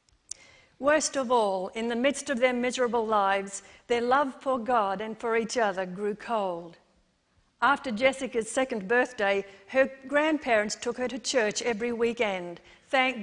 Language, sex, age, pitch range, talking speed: English, female, 50-69, 210-270 Hz, 150 wpm